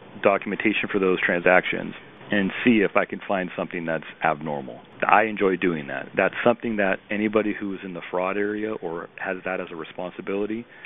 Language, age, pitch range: English, 40-59, 95-110 Hz